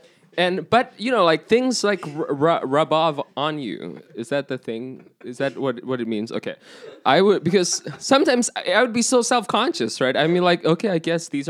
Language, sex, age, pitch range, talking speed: English, male, 20-39, 115-165 Hz, 225 wpm